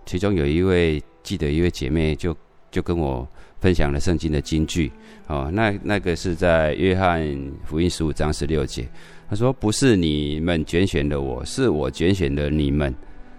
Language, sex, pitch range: Chinese, male, 75-90 Hz